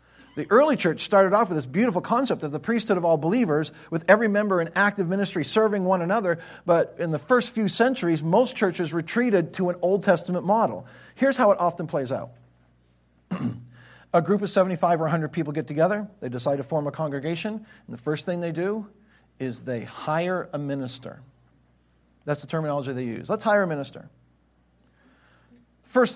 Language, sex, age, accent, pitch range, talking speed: English, male, 40-59, American, 130-185 Hz, 185 wpm